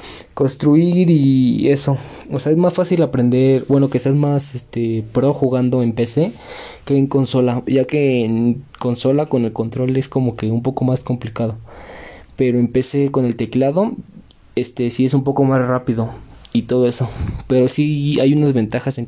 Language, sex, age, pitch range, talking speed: Spanish, male, 20-39, 115-135 Hz, 180 wpm